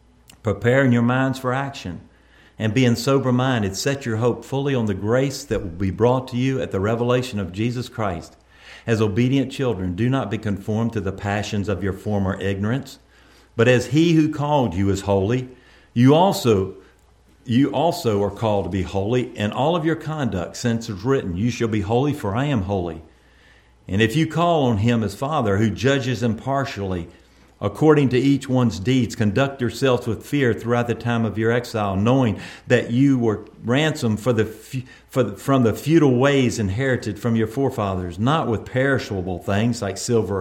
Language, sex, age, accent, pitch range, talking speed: English, male, 50-69, American, 100-135 Hz, 180 wpm